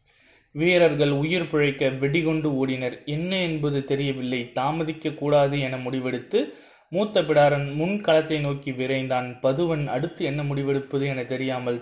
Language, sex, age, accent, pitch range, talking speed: Tamil, male, 30-49, native, 135-165 Hz, 120 wpm